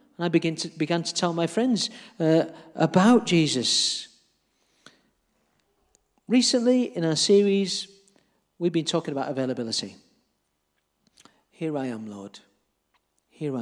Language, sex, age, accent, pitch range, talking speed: English, male, 40-59, British, 160-220 Hz, 100 wpm